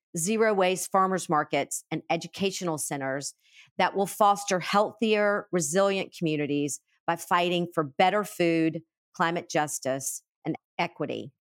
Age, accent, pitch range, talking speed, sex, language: 50-69, American, 155-190 Hz, 115 wpm, female, English